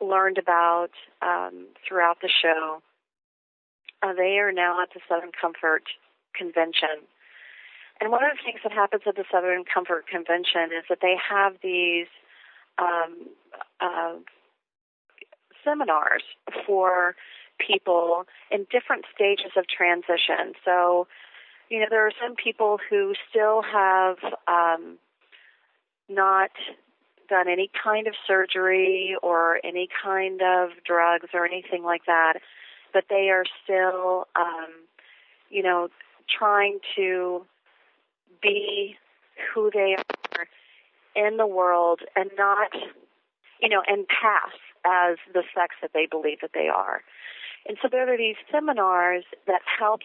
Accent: American